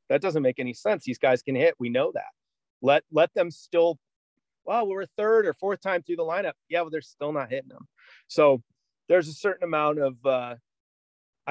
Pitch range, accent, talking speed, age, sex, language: 120-160 Hz, American, 205 wpm, 30-49, male, English